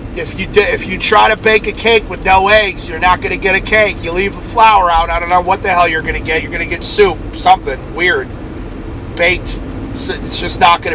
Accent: American